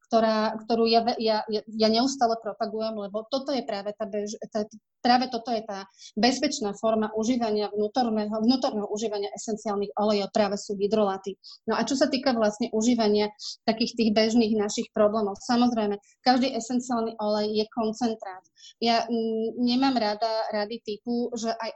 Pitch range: 210-235 Hz